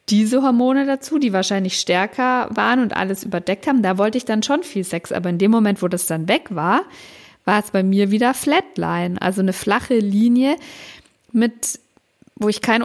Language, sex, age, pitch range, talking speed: German, female, 50-69, 190-255 Hz, 190 wpm